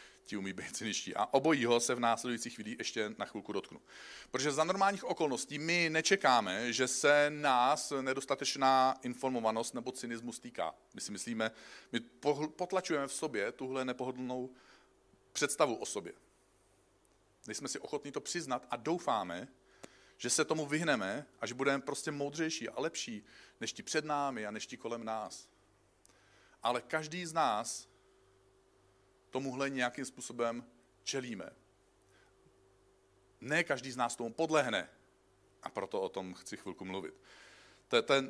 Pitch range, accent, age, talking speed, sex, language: 120-155 Hz, native, 40-59, 140 wpm, male, Czech